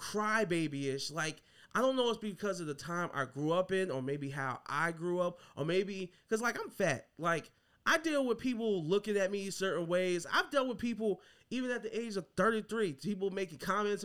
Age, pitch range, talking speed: 20-39, 165-225 Hz, 220 wpm